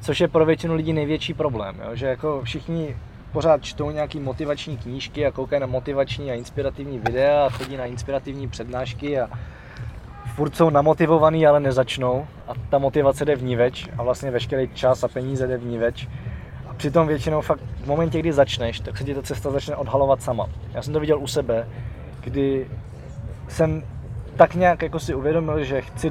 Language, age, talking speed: Czech, 20-39, 190 wpm